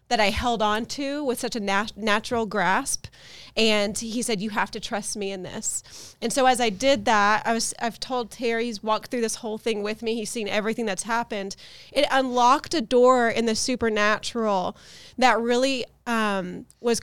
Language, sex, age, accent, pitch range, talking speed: English, female, 30-49, American, 215-245 Hz, 195 wpm